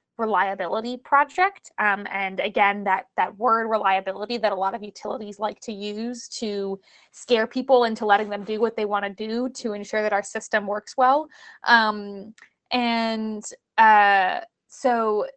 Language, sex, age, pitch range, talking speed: English, female, 20-39, 200-240 Hz, 155 wpm